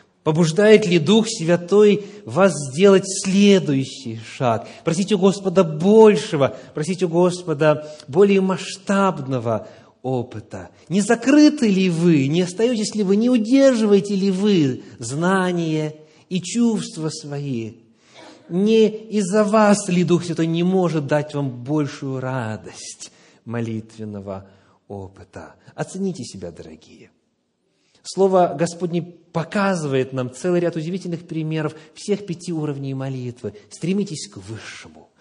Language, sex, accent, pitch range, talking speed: Russian, male, native, 120-190 Hz, 110 wpm